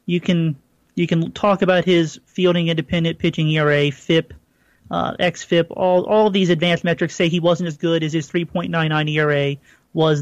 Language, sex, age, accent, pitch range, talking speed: English, male, 30-49, American, 165-205 Hz, 200 wpm